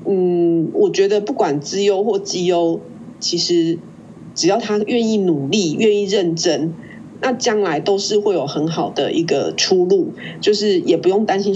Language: Chinese